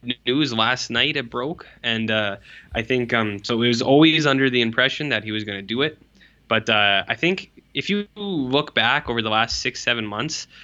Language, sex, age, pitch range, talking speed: English, male, 10-29, 105-120 Hz, 215 wpm